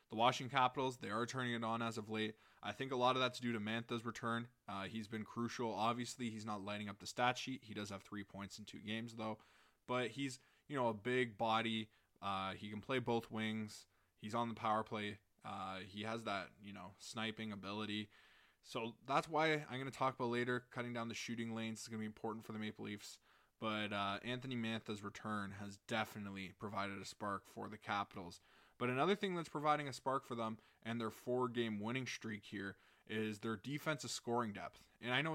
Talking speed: 215 wpm